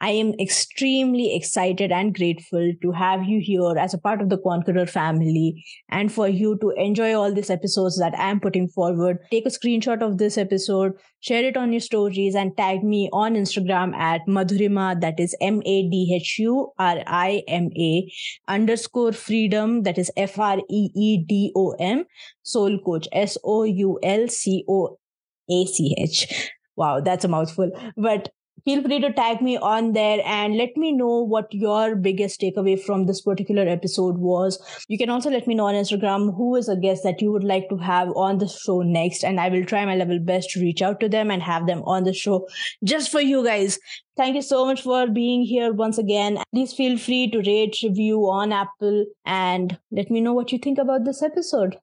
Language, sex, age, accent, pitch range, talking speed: English, female, 20-39, Indian, 185-225 Hz, 205 wpm